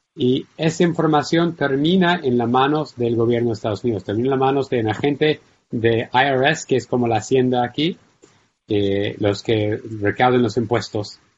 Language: Spanish